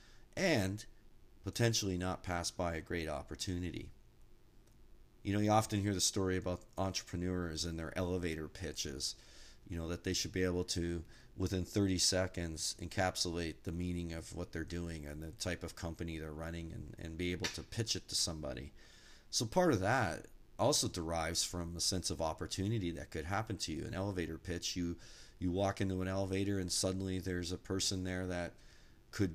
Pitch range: 85-105 Hz